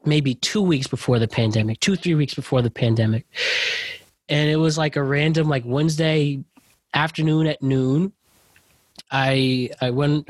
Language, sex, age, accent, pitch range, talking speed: English, male, 20-39, American, 130-165 Hz, 150 wpm